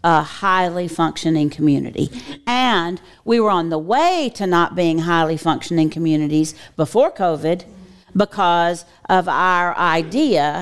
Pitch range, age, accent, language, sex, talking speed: 165-205 Hz, 50-69, American, English, female, 125 wpm